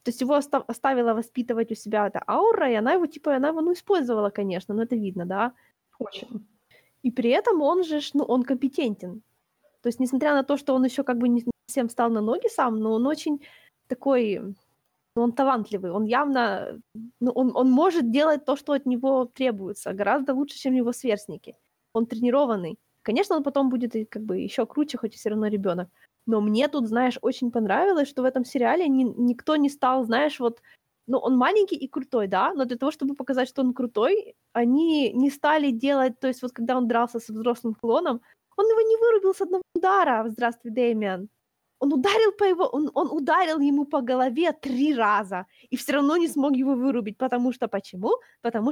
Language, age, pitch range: Ukrainian, 20-39, 230-290 Hz